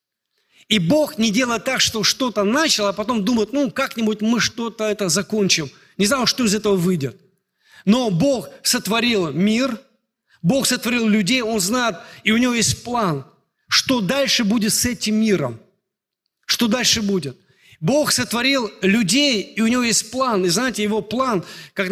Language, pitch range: Russian, 200-250 Hz